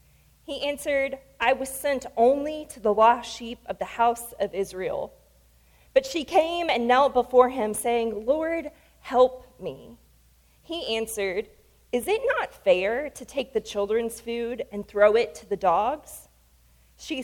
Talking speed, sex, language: 155 wpm, female, English